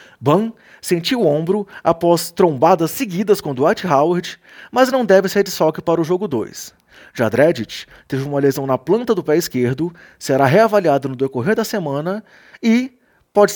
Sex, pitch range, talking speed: male, 140-210 Hz, 170 wpm